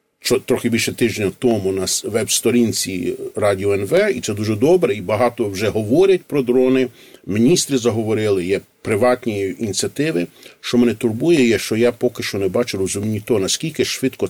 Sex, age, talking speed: male, 50-69, 160 wpm